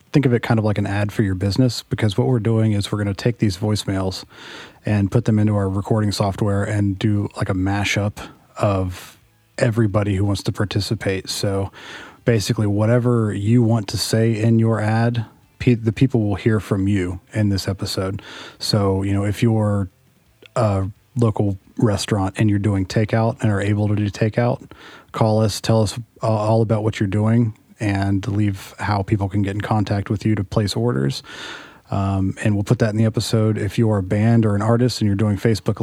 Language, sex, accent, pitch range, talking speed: English, male, American, 100-115 Hz, 200 wpm